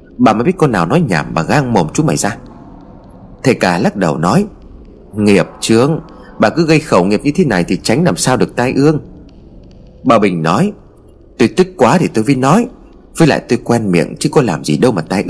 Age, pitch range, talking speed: 30-49, 95-155 Hz, 225 wpm